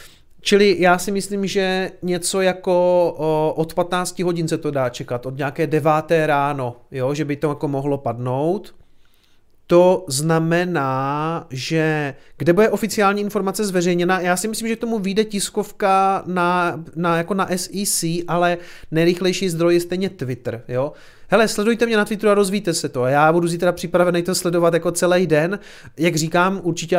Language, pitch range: Czech, 135-175 Hz